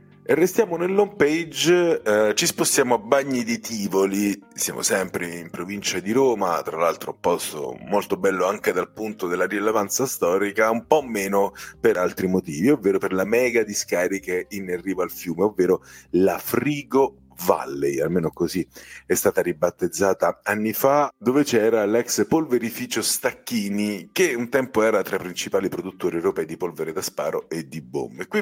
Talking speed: 160 wpm